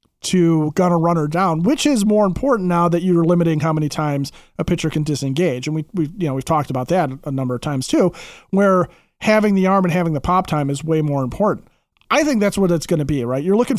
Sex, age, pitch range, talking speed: male, 30-49, 160-190 Hz, 250 wpm